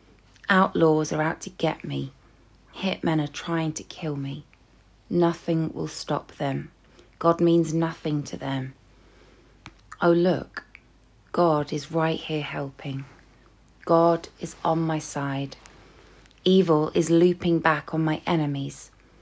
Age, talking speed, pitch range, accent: 30-49, 125 wpm, 145-170 Hz, British